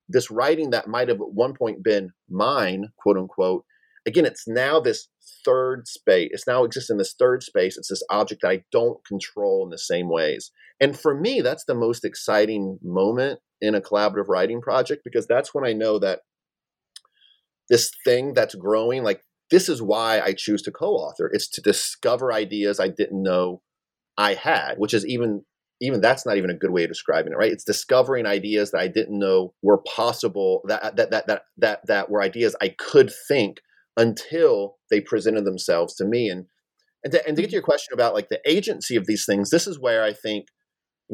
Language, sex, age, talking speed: English, male, 30-49, 200 wpm